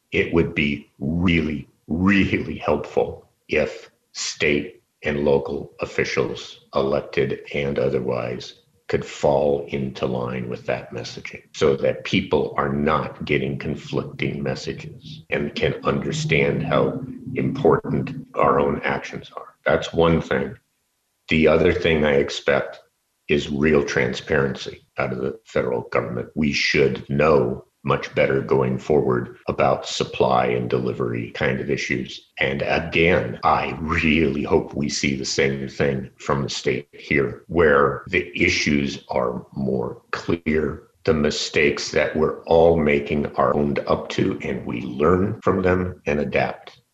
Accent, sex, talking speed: American, male, 135 wpm